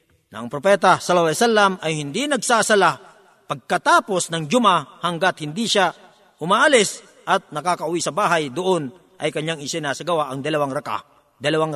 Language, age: Filipino, 50-69